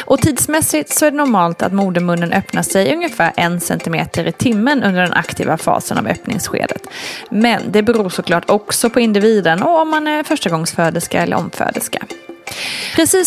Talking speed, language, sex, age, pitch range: 165 wpm, Swedish, female, 20-39, 190-270 Hz